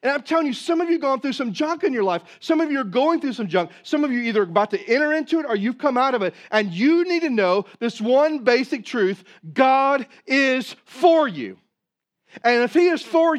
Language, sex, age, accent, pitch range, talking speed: English, male, 40-59, American, 190-270 Hz, 255 wpm